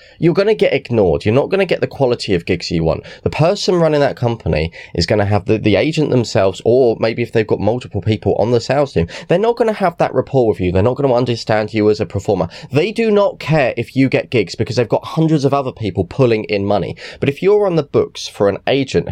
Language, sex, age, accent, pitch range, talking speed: English, male, 20-39, British, 100-145 Hz, 265 wpm